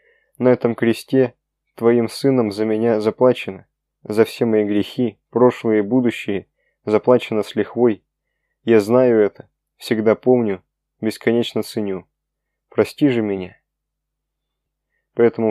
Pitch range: 105-120 Hz